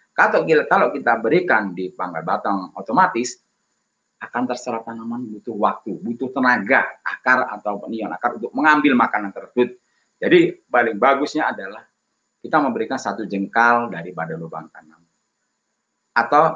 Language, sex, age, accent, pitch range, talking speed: Indonesian, male, 30-49, native, 95-140 Hz, 125 wpm